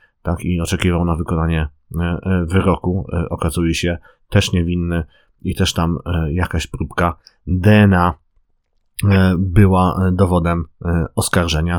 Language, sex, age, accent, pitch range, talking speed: Polish, male, 30-49, native, 85-105 Hz, 95 wpm